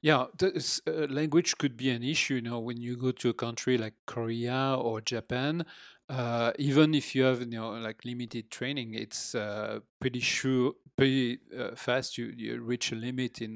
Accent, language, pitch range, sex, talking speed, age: French, English, 120-150 Hz, male, 190 wpm, 40-59